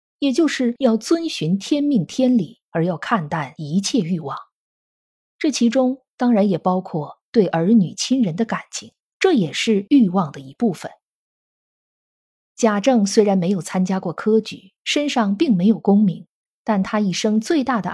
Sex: female